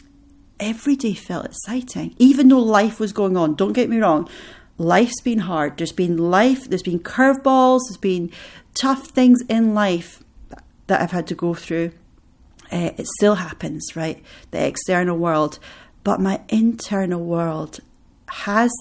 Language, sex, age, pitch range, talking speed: English, female, 40-59, 165-215 Hz, 155 wpm